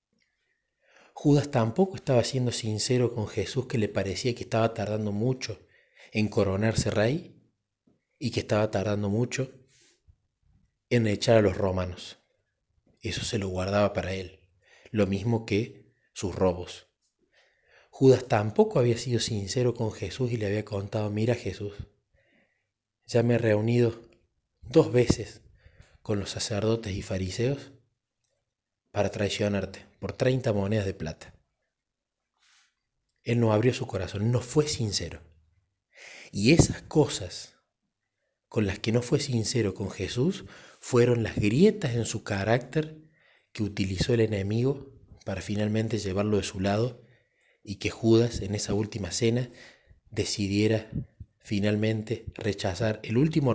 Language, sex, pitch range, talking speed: Spanish, male, 100-120 Hz, 130 wpm